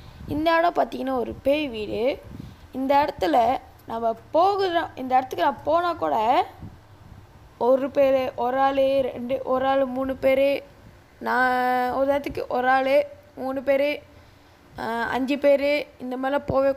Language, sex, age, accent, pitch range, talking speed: Tamil, female, 20-39, native, 225-275 Hz, 130 wpm